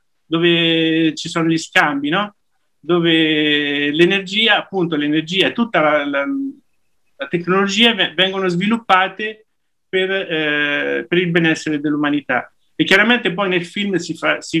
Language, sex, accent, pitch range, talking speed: Italian, male, native, 145-175 Hz, 130 wpm